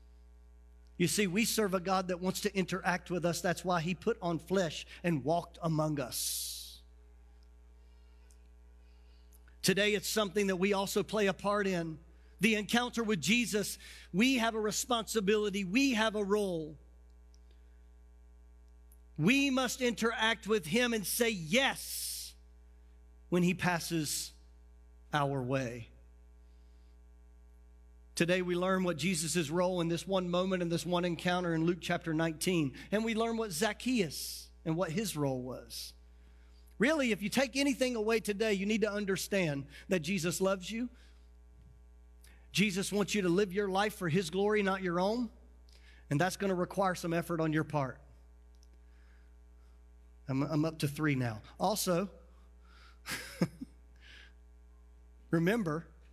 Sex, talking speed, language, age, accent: male, 140 wpm, English, 40-59, American